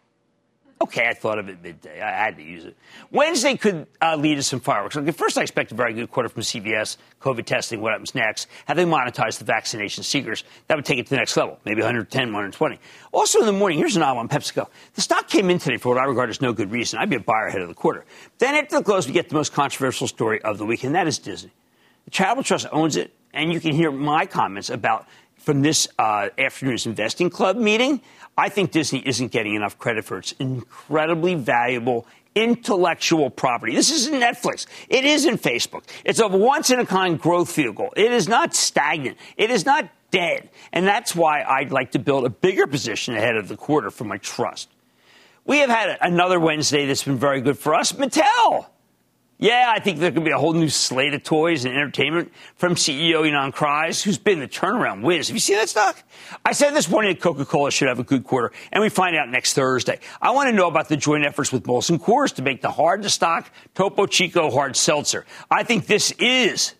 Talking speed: 220 wpm